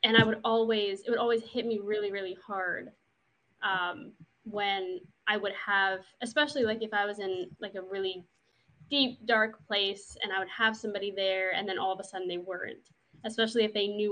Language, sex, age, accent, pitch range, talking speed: English, female, 20-39, American, 190-220 Hz, 200 wpm